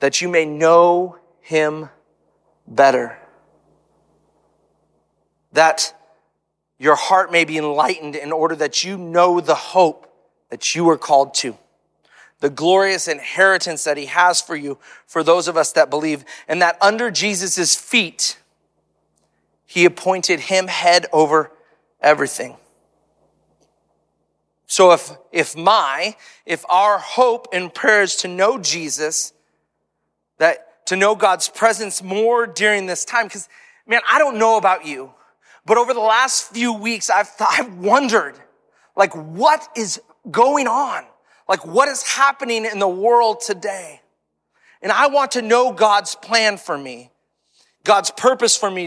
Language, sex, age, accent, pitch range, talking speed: English, male, 30-49, American, 150-220 Hz, 140 wpm